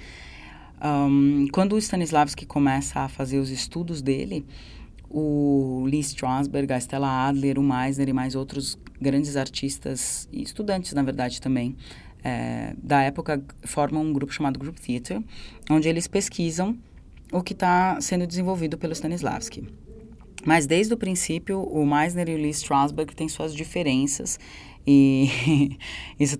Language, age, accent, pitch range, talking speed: Portuguese, 20-39, Brazilian, 130-155 Hz, 140 wpm